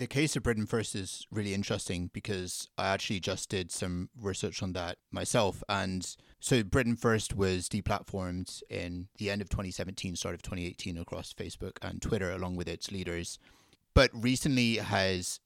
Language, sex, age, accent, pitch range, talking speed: English, male, 30-49, British, 90-110 Hz, 165 wpm